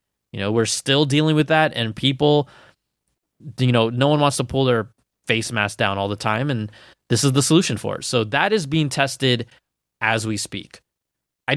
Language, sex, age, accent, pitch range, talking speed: English, male, 20-39, American, 115-145 Hz, 200 wpm